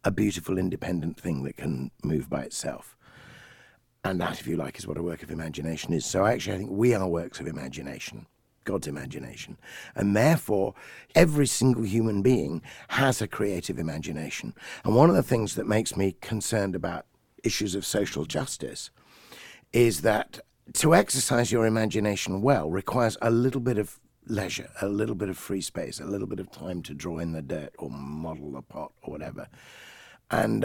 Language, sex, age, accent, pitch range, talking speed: English, male, 50-69, British, 90-120 Hz, 180 wpm